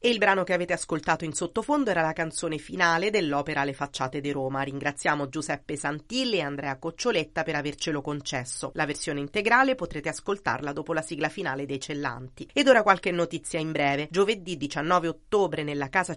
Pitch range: 150-200 Hz